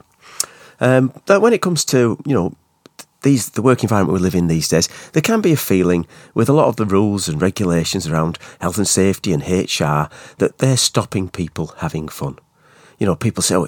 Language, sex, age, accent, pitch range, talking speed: English, male, 40-59, British, 90-150 Hz, 205 wpm